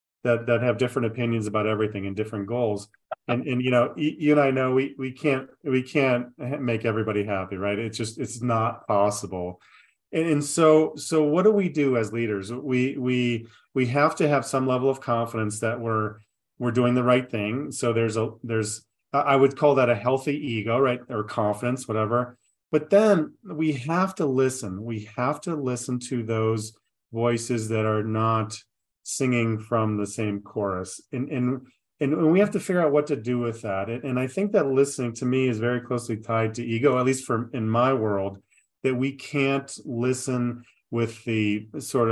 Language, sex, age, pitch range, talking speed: English, male, 30-49, 110-135 Hz, 190 wpm